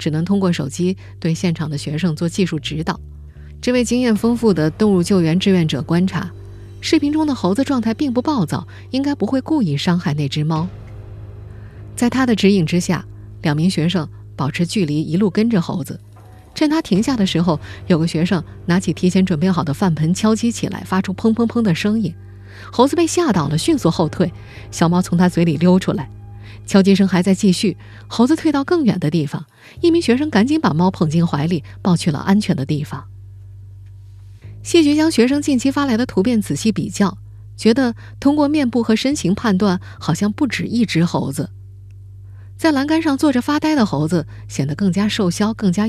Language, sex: Chinese, female